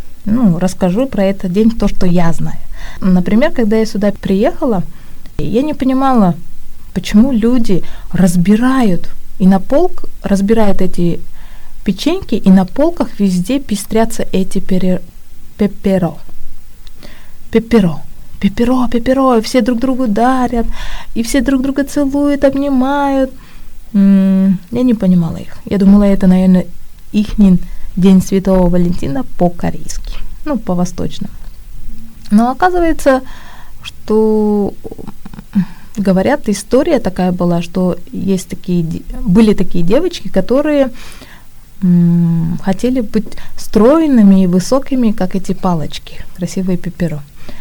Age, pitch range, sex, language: 20-39, 180-240 Hz, female, Korean